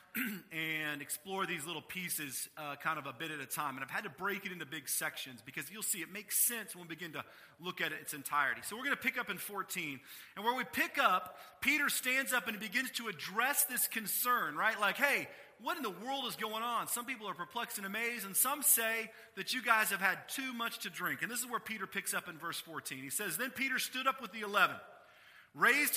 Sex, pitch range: male, 195-245 Hz